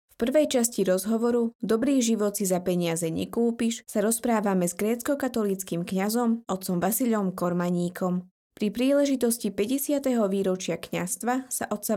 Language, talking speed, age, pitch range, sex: Slovak, 125 wpm, 20-39, 180-230 Hz, female